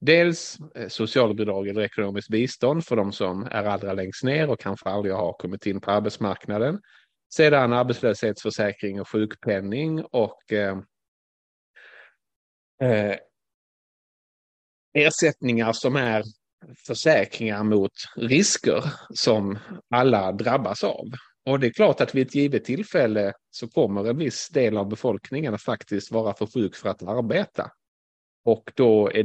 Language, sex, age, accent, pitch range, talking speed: Swedish, male, 30-49, Norwegian, 100-125 Hz, 125 wpm